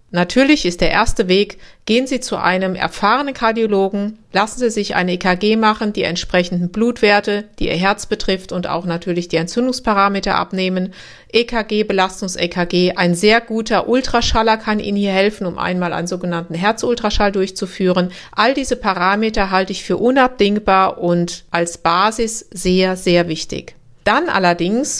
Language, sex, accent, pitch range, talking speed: German, female, German, 180-230 Hz, 145 wpm